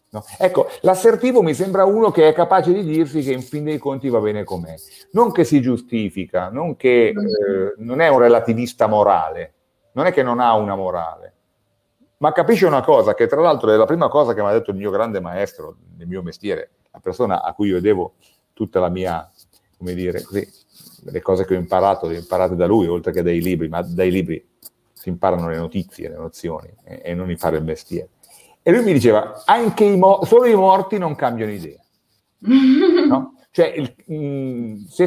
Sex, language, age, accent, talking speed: male, Italian, 40-59, native, 190 wpm